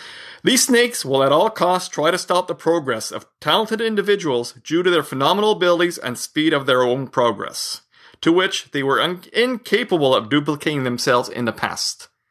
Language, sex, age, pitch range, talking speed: English, male, 40-59, 120-170 Hz, 175 wpm